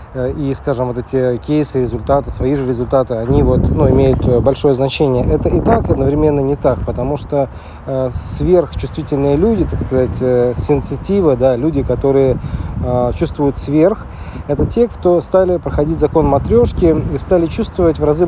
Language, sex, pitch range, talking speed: Russian, male, 130-160 Hz, 160 wpm